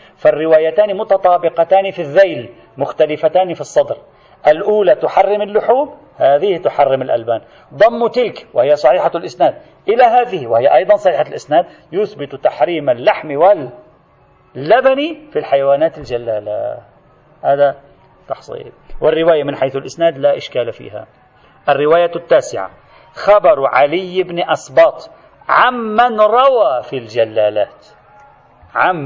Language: Arabic